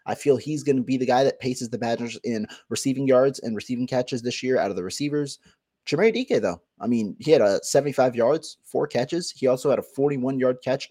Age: 30-49